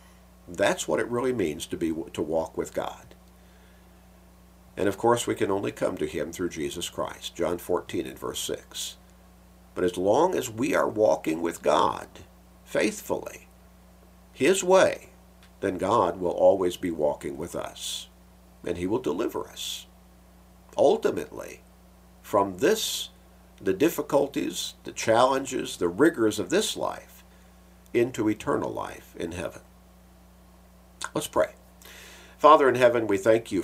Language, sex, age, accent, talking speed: English, male, 50-69, American, 140 wpm